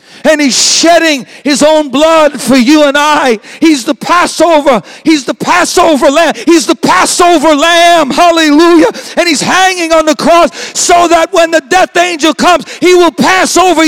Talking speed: 170 wpm